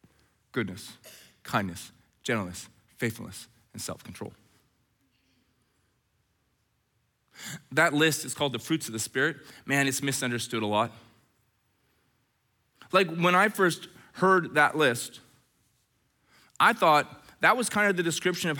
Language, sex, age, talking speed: English, male, 20-39, 115 wpm